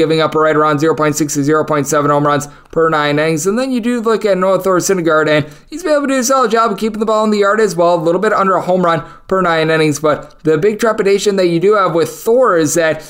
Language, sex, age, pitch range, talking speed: English, male, 20-39, 140-165 Hz, 285 wpm